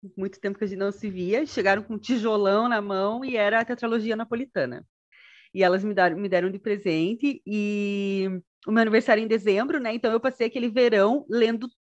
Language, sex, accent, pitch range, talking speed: Portuguese, female, Brazilian, 210-260 Hz, 210 wpm